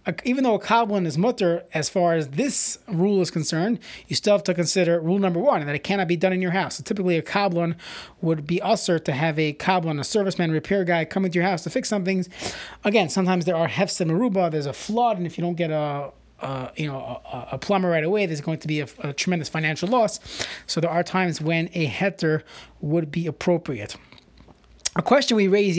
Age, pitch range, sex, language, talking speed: 30-49, 160-220 Hz, male, English, 235 wpm